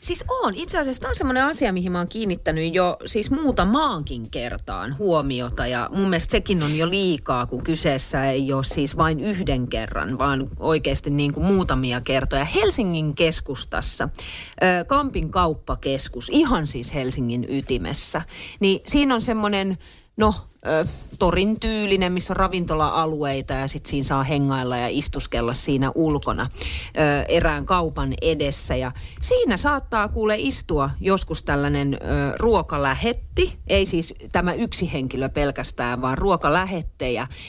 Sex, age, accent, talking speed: female, 30-49, native, 130 wpm